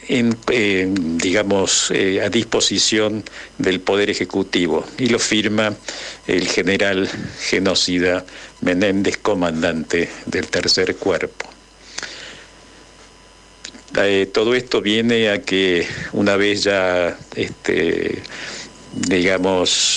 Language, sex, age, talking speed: Spanish, male, 60-79, 95 wpm